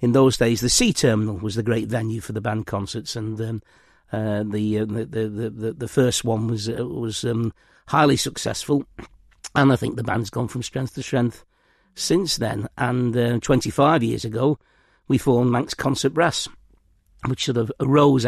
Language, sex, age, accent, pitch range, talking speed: English, male, 60-79, British, 110-130 Hz, 185 wpm